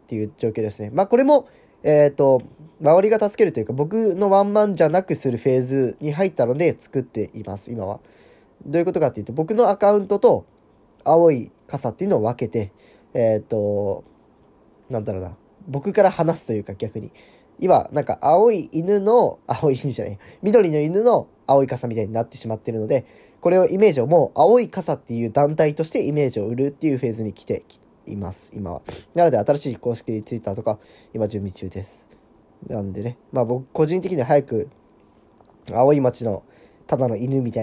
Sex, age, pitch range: male, 10-29, 110-160 Hz